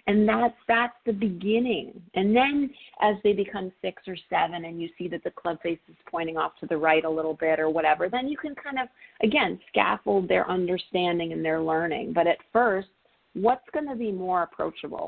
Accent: American